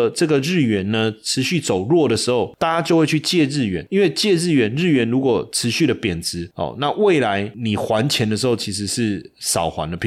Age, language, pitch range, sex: 30-49, Chinese, 105-145 Hz, male